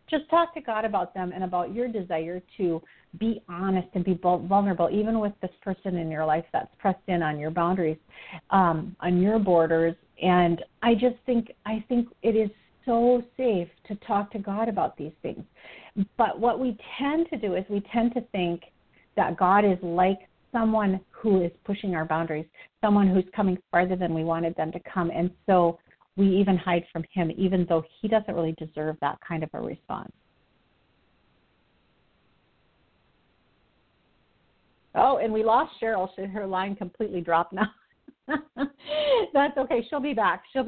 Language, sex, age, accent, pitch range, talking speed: English, female, 40-59, American, 175-225 Hz, 170 wpm